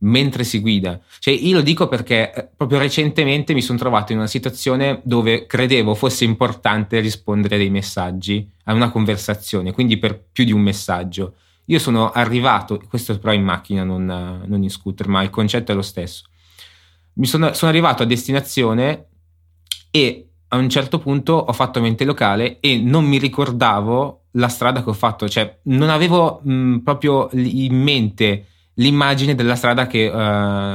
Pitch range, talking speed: 105-130 Hz, 170 wpm